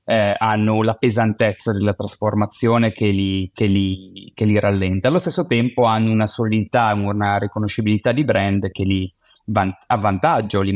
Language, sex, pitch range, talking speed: Italian, male, 105-125 Hz, 155 wpm